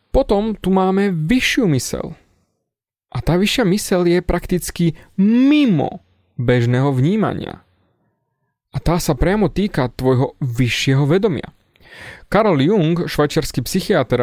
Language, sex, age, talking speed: Slovak, male, 30-49, 110 wpm